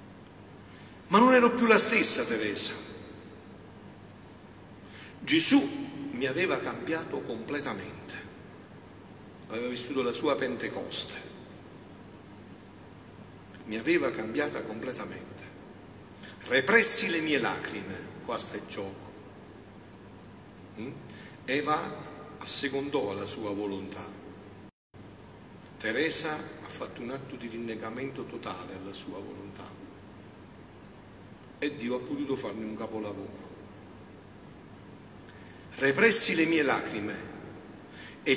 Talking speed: 90 wpm